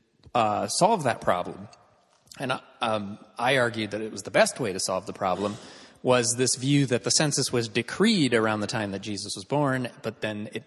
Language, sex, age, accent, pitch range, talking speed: English, male, 30-49, American, 105-130 Hz, 200 wpm